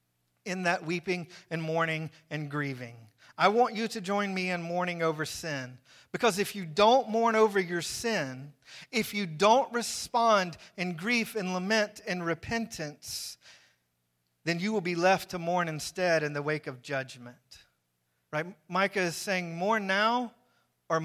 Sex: male